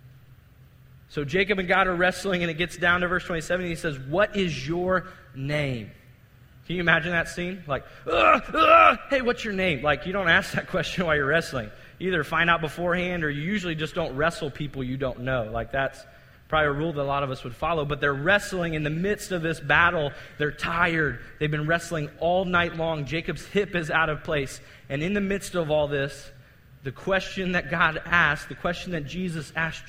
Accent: American